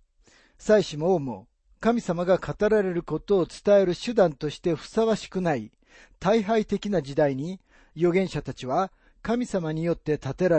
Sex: male